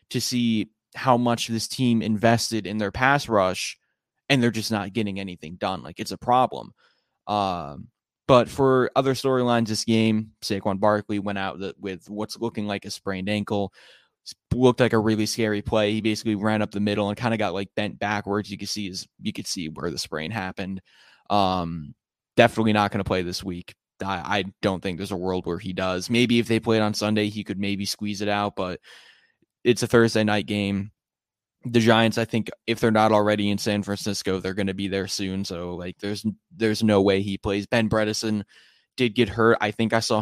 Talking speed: 210 wpm